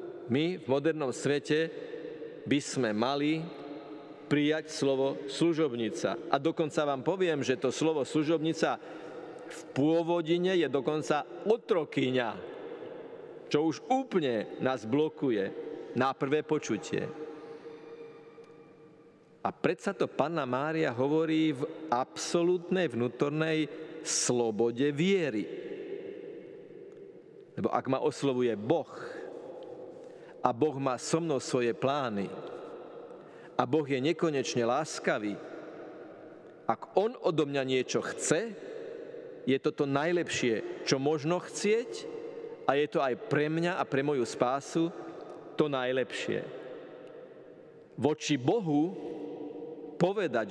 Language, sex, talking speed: Slovak, male, 105 wpm